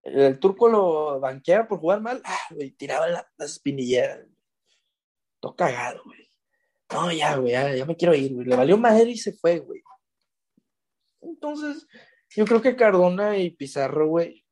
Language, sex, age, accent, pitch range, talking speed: Spanish, male, 20-39, Mexican, 140-200 Hz, 165 wpm